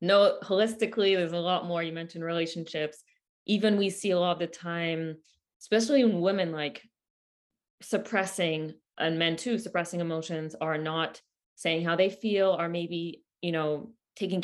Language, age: English, 20-39